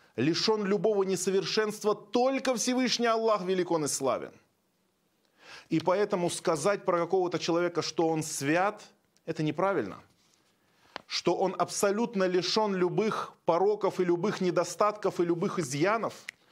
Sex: male